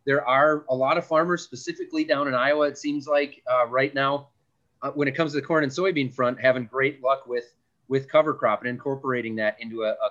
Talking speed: 230 wpm